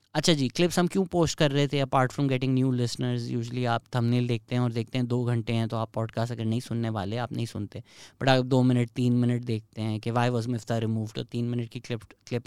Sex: male